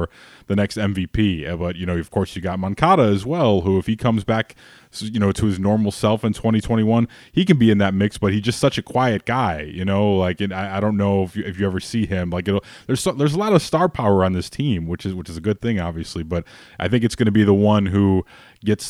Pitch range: 95-120 Hz